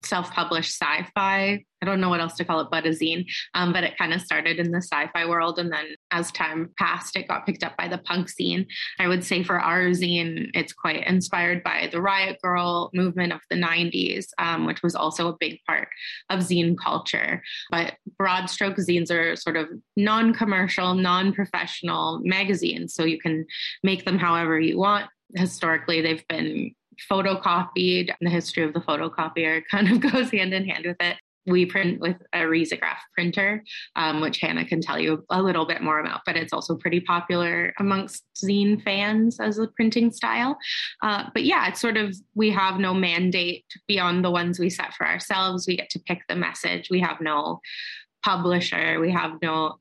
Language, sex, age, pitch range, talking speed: English, female, 20-39, 165-190 Hz, 190 wpm